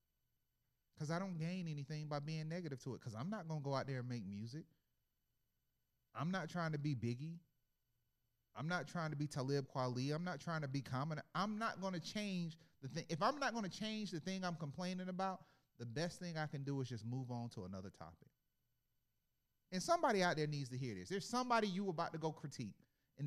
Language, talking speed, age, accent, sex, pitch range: English, 225 wpm, 30-49, American, male, 125-185 Hz